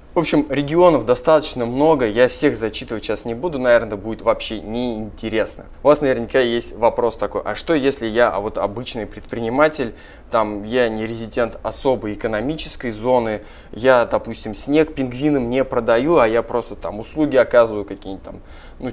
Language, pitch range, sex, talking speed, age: Russian, 110-135 Hz, male, 160 wpm, 20-39